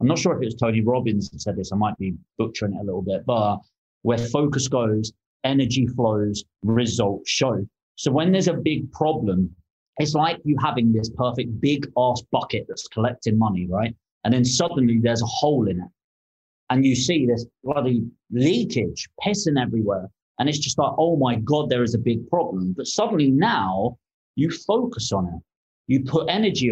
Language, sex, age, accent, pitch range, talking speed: English, male, 30-49, British, 110-140 Hz, 190 wpm